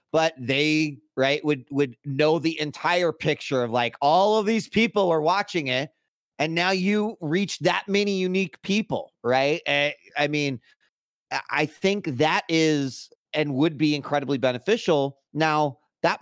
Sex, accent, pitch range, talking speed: male, American, 120-155 Hz, 150 wpm